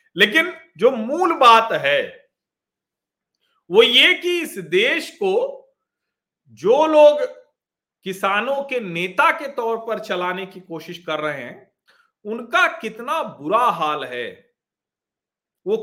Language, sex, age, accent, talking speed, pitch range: Hindi, male, 40-59, native, 120 wpm, 205-325 Hz